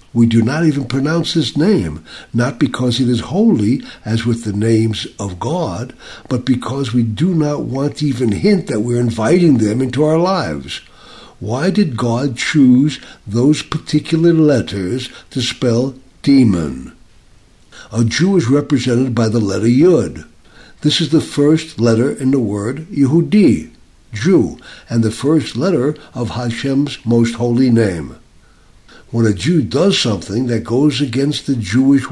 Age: 60-79